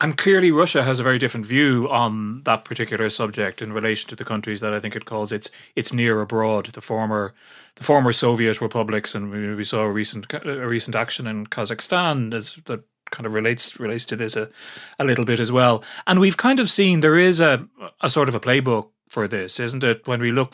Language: English